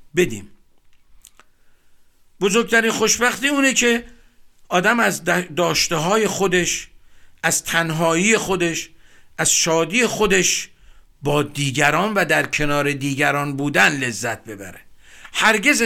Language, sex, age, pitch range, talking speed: Persian, male, 50-69, 140-205 Hz, 95 wpm